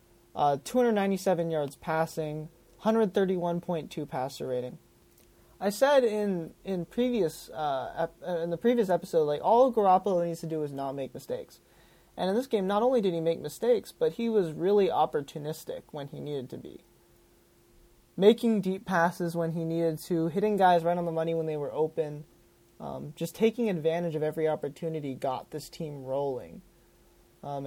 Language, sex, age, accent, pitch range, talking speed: English, male, 20-39, American, 155-200 Hz, 165 wpm